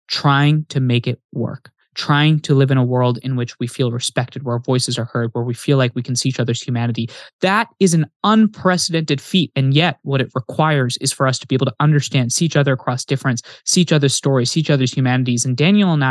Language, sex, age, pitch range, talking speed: English, male, 20-39, 130-160 Hz, 240 wpm